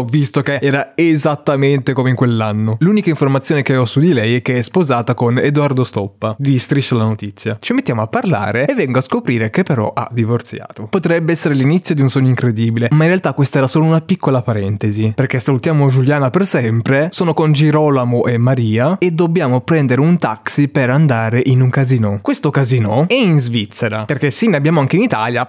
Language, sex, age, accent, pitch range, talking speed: Italian, male, 20-39, native, 115-155 Hz, 200 wpm